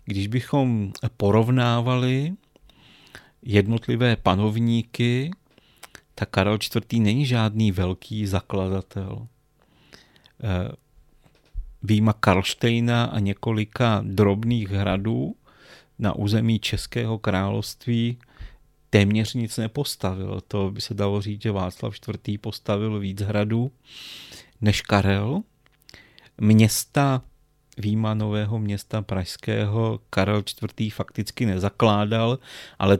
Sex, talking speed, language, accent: male, 85 wpm, Czech, native